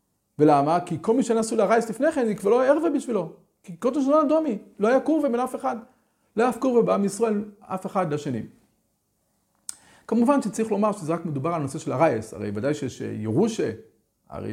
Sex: male